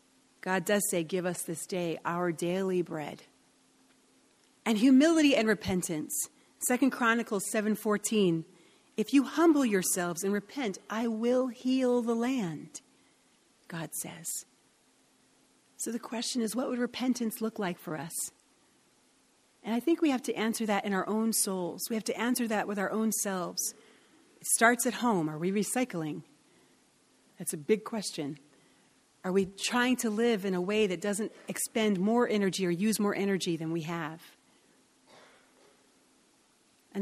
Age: 40-59